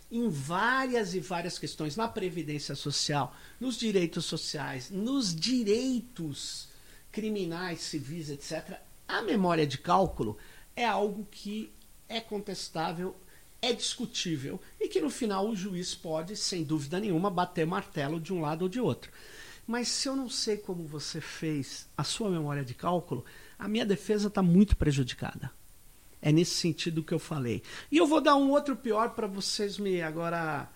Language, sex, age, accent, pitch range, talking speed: Portuguese, male, 50-69, Brazilian, 155-220 Hz, 160 wpm